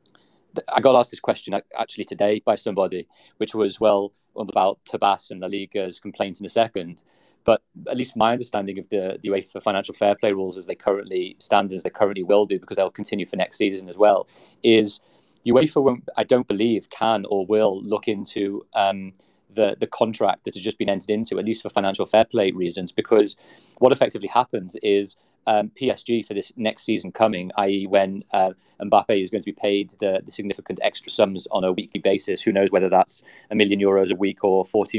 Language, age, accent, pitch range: English, 30-49, British, 95-110 Hz